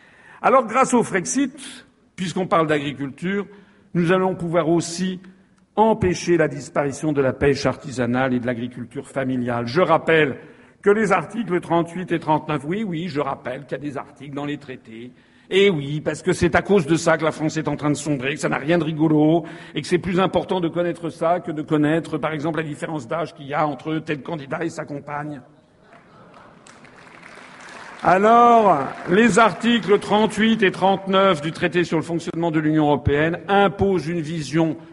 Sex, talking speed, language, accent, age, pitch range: male, 185 wpm, French, French, 50-69, 155-200 Hz